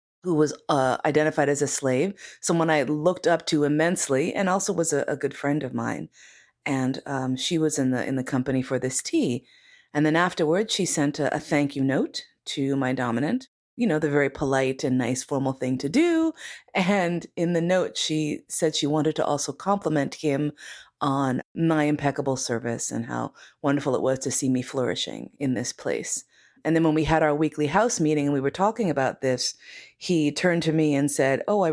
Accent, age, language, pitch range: American, 30-49, English, 135-160 Hz